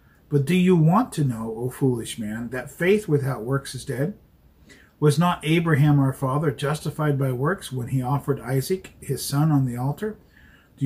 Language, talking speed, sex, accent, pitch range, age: English, 180 wpm, male, American, 125-150 Hz, 50-69